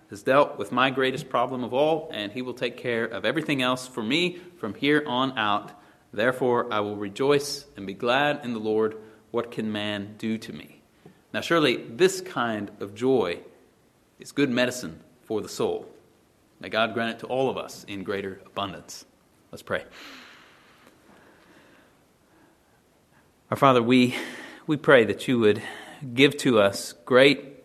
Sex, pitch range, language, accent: male, 110-130 Hz, English, American